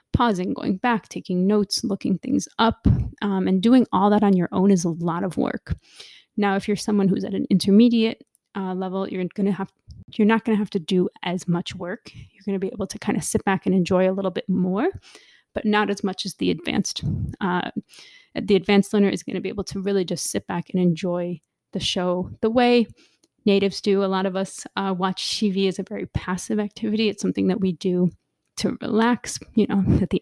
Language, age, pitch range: English, 30-49, 185-220 Hz